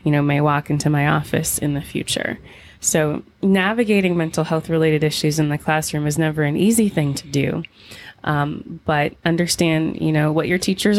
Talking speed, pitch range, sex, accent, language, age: 185 wpm, 145-170 Hz, female, American, English, 20-39